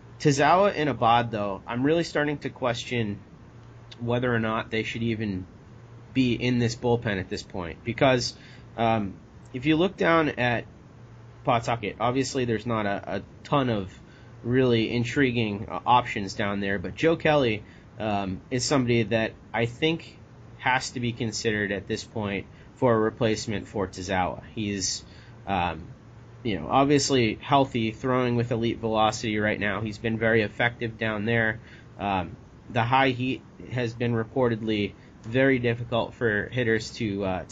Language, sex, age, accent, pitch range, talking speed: English, male, 30-49, American, 105-125 Hz, 150 wpm